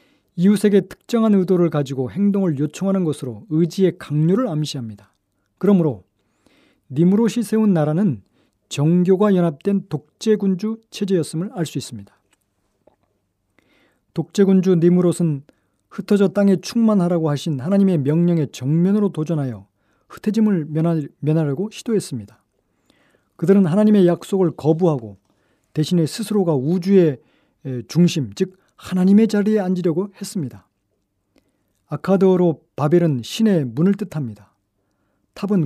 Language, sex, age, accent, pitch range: Korean, male, 40-59, native, 135-195 Hz